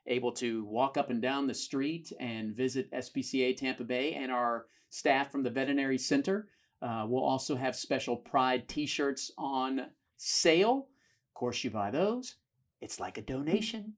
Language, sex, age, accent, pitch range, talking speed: English, male, 40-59, American, 125-155 Hz, 165 wpm